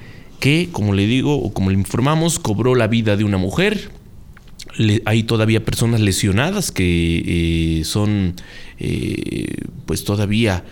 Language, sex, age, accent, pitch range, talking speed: Spanish, male, 30-49, Mexican, 100-140 Hz, 130 wpm